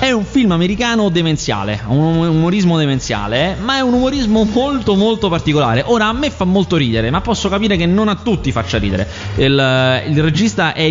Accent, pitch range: native, 120-180 Hz